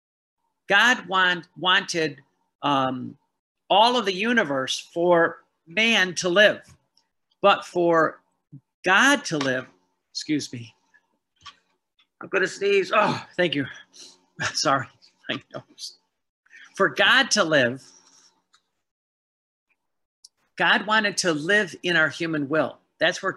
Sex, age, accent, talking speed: male, 50-69, American, 110 wpm